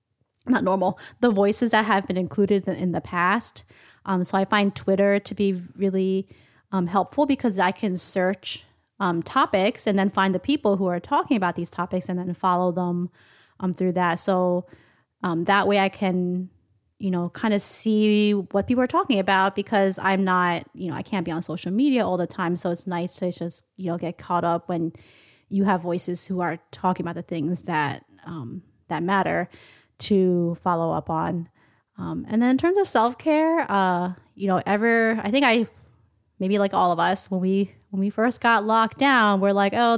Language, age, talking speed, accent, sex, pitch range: English, 20-39, 200 wpm, American, female, 180-215 Hz